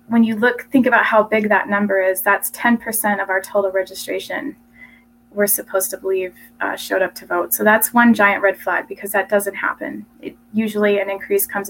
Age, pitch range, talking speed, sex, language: 20-39, 195-225 Hz, 205 wpm, female, English